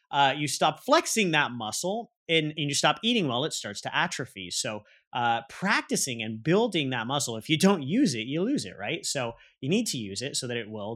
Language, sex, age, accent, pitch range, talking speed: English, male, 30-49, American, 120-170 Hz, 230 wpm